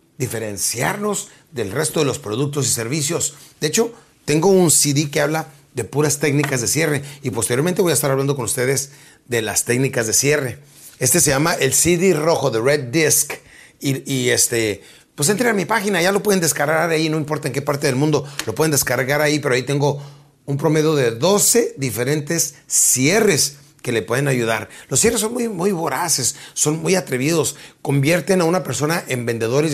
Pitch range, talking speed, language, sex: 135-160 Hz, 190 wpm, Spanish, male